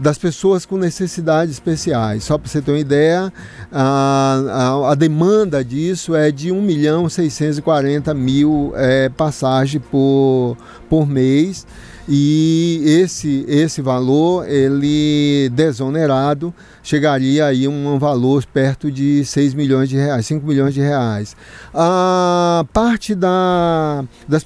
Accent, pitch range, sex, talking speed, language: Brazilian, 135-175 Hz, male, 115 wpm, Portuguese